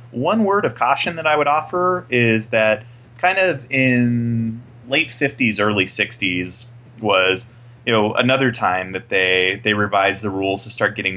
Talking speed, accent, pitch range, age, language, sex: 165 wpm, American, 95-120 Hz, 30-49, English, male